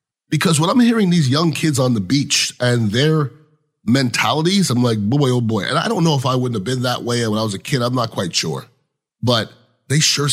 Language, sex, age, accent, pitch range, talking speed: English, male, 30-49, American, 115-145 Hz, 240 wpm